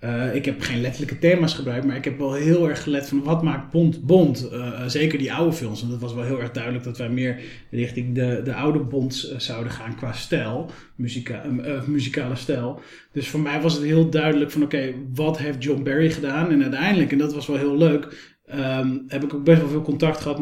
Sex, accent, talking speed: male, Dutch, 230 wpm